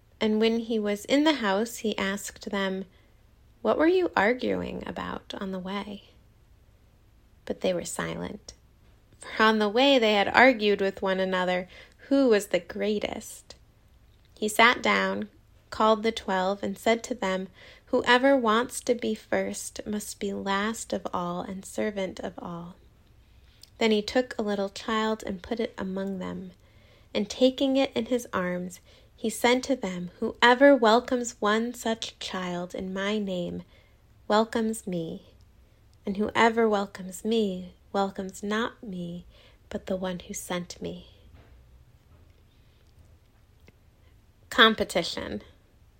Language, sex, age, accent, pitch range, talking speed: English, female, 20-39, American, 180-230 Hz, 135 wpm